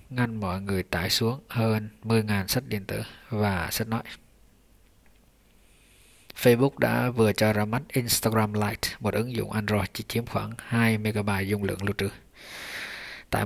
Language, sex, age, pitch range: English, male, 20-39, 105-115 Hz